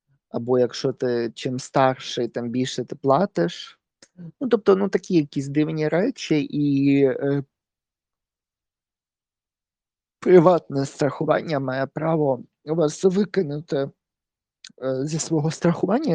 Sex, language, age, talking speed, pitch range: male, Ukrainian, 20-39, 105 wpm, 120-145 Hz